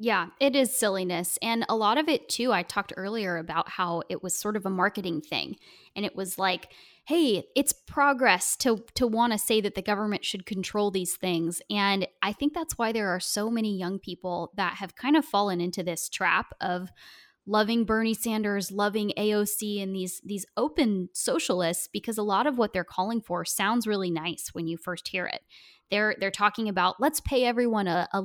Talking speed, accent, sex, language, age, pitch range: 205 wpm, American, female, English, 10-29, 185-225 Hz